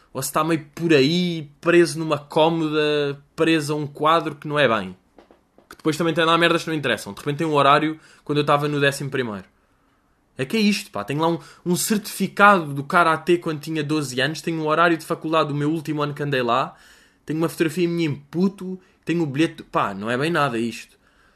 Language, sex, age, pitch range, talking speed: Portuguese, male, 20-39, 135-180 Hz, 230 wpm